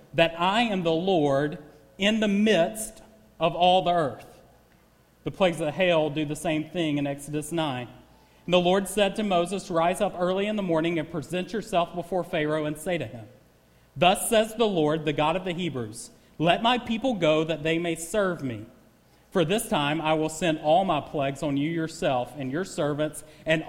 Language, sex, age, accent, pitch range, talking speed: English, male, 40-59, American, 135-175 Hz, 200 wpm